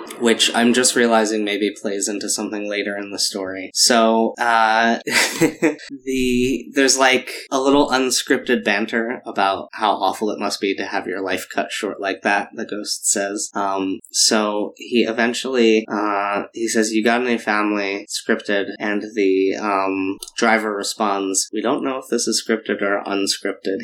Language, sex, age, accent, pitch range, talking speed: English, male, 20-39, American, 100-115 Hz, 160 wpm